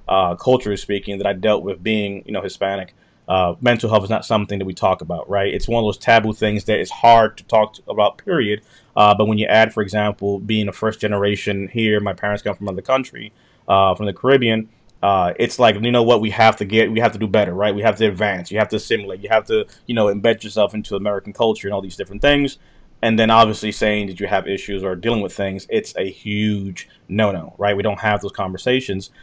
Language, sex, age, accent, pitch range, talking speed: English, male, 30-49, American, 100-115 Hz, 240 wpm